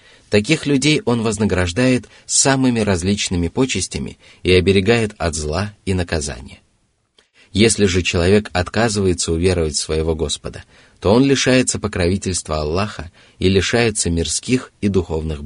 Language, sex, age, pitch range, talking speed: Russian, male, 30-49, 90-115 Hz, 120 wpm